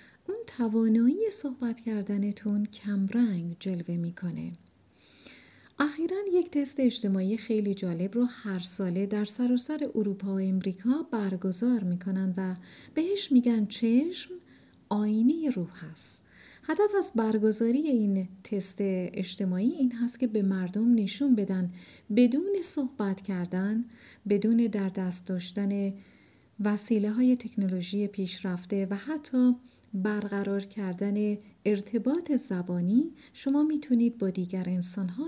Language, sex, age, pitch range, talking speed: Persian, female, 40-59, 190-250 Hz, 110 wpm